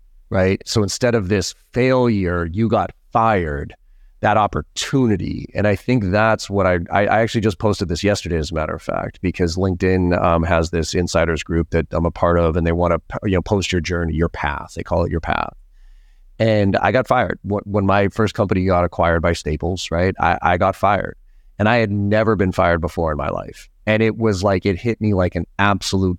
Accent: American